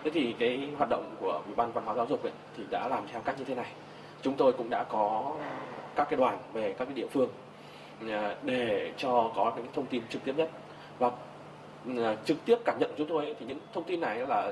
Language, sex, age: Vietnamese, male, 20-39